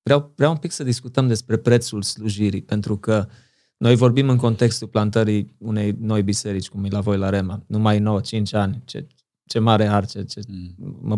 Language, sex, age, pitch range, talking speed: Romanian, male, 20-39, 105-125 Hz, 175 wpm